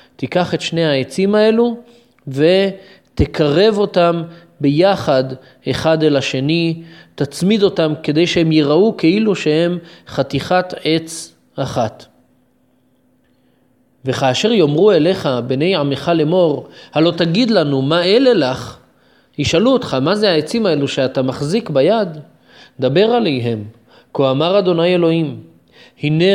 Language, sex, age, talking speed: Hebrew, male, 30-49, 110 wpm